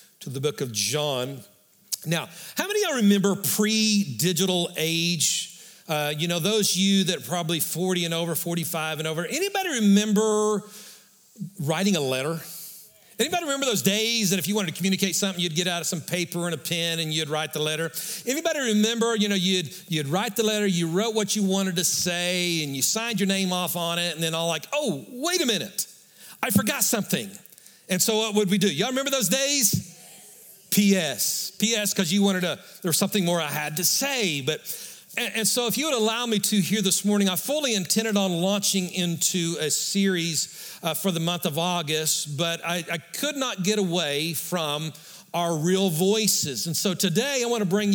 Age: 50-69